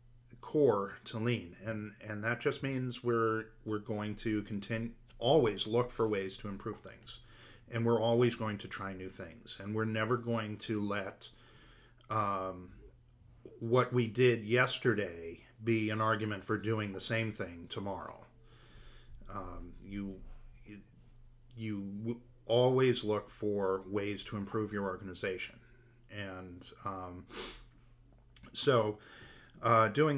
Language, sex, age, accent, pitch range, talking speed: English, male, 40-59, American, 100-120 Hz, 125 wpm